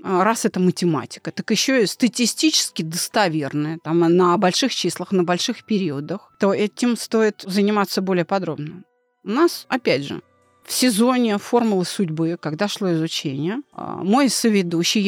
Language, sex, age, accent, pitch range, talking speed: Russian, female, 30-49, native, 180-245 Hz, 130 wpm